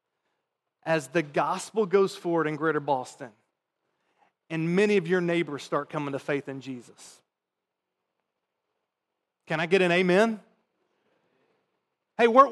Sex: male